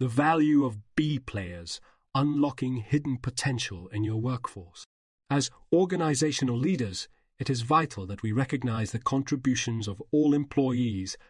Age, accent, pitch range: 40-59, British, 115-145 Hz